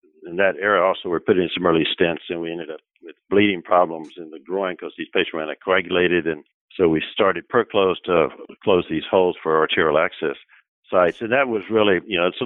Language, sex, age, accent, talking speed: English, male, 60-79, American, 225 wpm